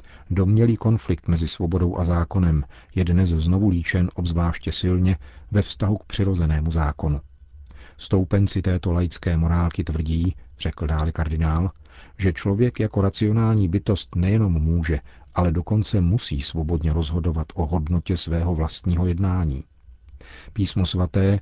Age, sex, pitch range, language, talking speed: 40-59, male, 80-95 Hz, Czech, 125 wpm